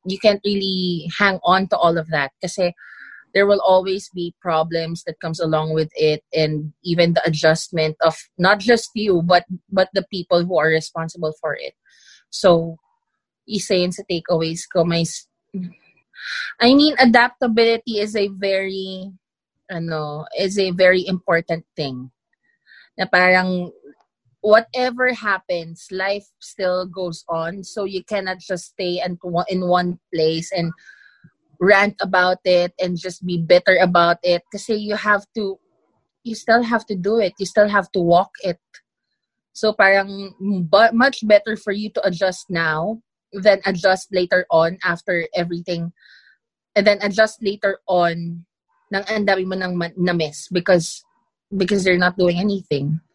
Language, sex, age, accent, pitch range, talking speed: English, female, 20-39, Filipino, 170-205 Hz, 145 wpm